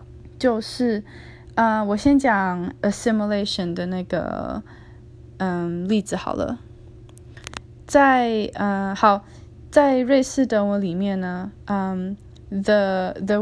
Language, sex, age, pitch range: English, female, 10-29, 190-235 Hz